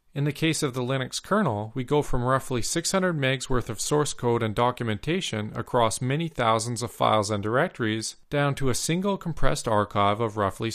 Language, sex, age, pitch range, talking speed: English, male, 40-59, 105-140 Hz, 190 wpm